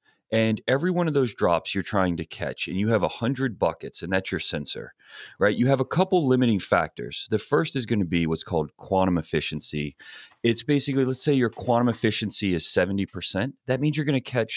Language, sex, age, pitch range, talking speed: English, male, 30-49, 95-135 Hz, 210 wpm